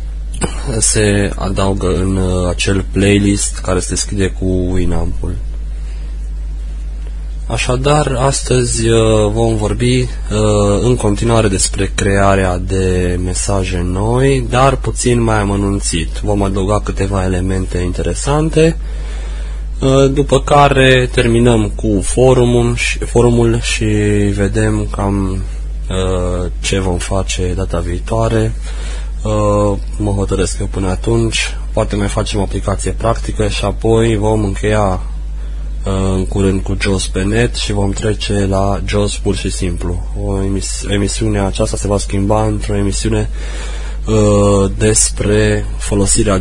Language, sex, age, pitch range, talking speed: Romanian, male, 20-39, 90-110 Hz, 110 wpm